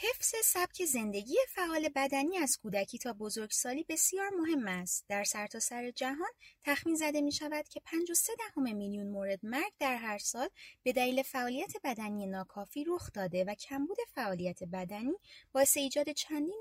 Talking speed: 150 wpm